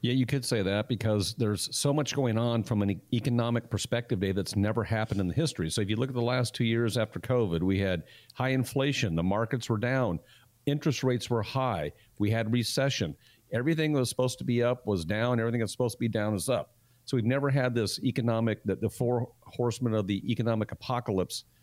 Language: English